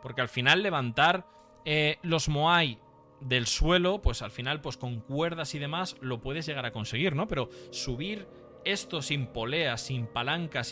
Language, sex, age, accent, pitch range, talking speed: Spanish, male, 20-39, Spanish, 115-160 Hz, 170 wpm